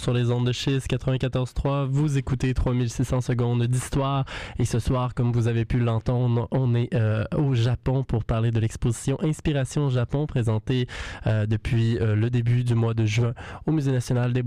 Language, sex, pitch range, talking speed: French, male, 115-135 Hz, 185 wpm